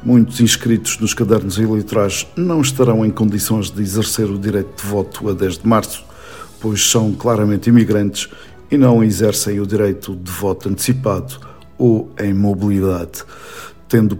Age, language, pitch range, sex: 50-69, Portuguese, 100-130 Hz, male